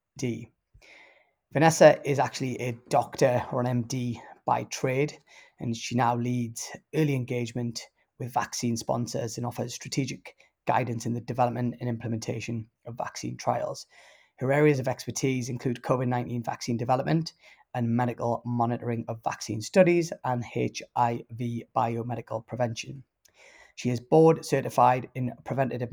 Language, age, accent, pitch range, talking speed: English, 20-39, British, 115-130 Hz, 130 wpm